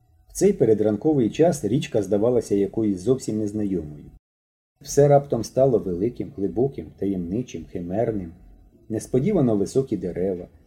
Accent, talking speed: native, 105 wpm